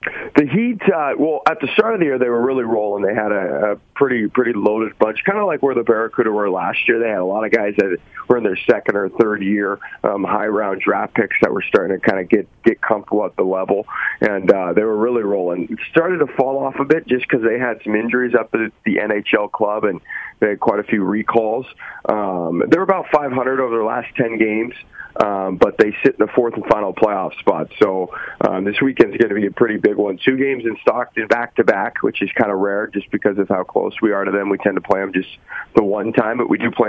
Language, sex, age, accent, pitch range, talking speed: English, male, 40-59, American, 105-140 Hz, 260 wpm